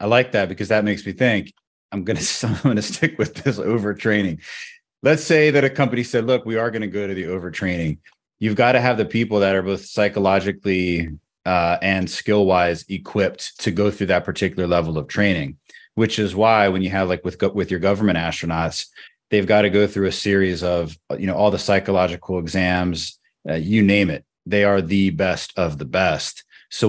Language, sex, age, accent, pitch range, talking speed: English, male, 30-49, American, 90-105 Hz, 210 wpm